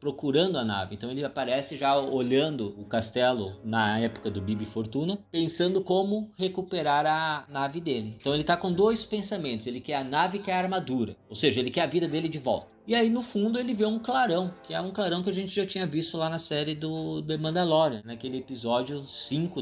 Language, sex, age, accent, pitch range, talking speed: Portuguese, male, 20-39, Brazilian, 120-165 Hz, 215 wpm